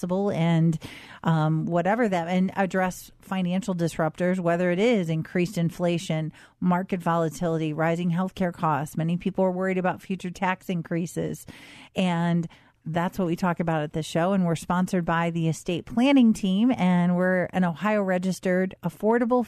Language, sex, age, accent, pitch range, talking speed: English, female, 40-59, American, 165-195 Hz, 155 wpm